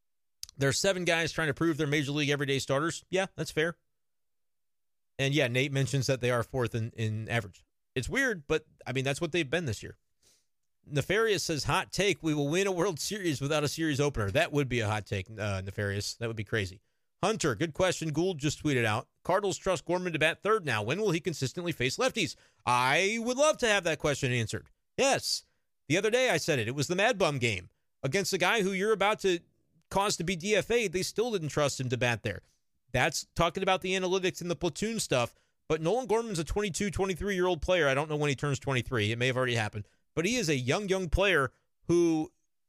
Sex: male